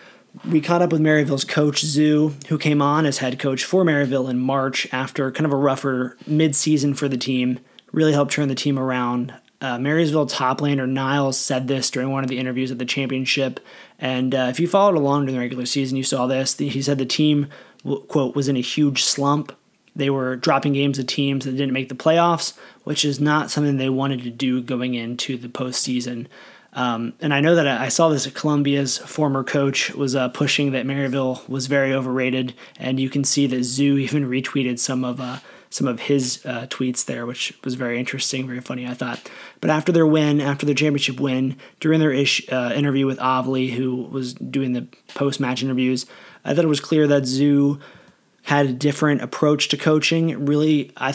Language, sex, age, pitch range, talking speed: English, male, 20-39, 130-145 Hz, 205 wpm